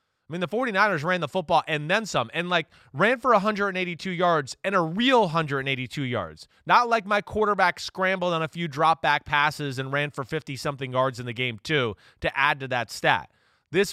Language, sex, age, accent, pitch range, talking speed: English, male, 20-39, American, 150-195 Hz, 205 wpm